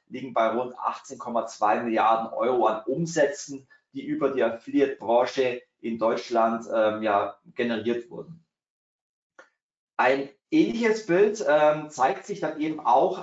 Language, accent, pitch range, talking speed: German, German, 125-165 Hz, 120 wpm